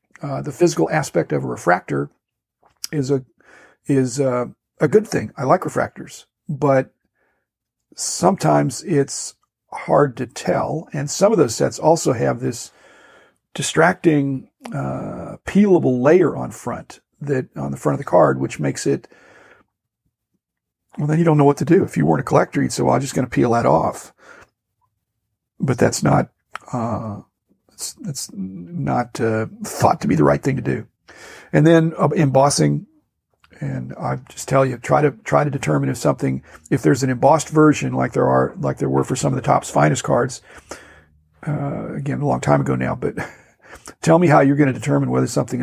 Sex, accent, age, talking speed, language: male, American, 50-69, 180 wpm, English